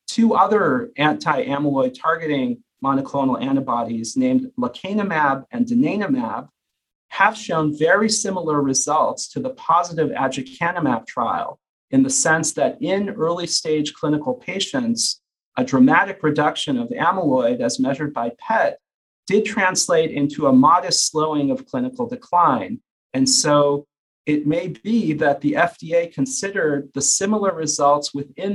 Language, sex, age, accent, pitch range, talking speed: English, male, 40-59, American, 140-230 Hz, 125 wpm